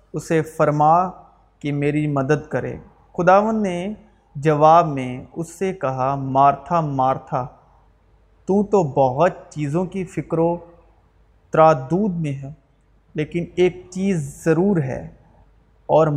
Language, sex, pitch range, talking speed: Urdu, male, 145-180 Hz, 115 wpm